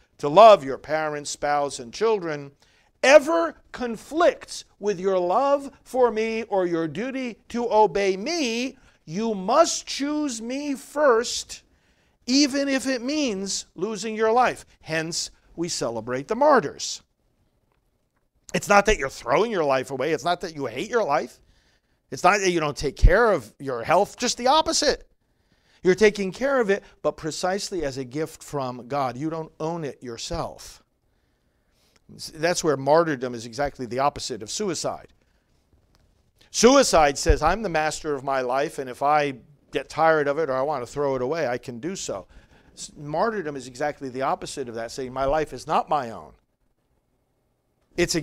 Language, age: English, 50-69